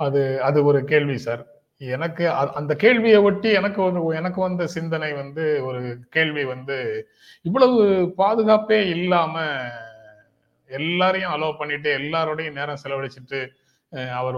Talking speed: 115 wpm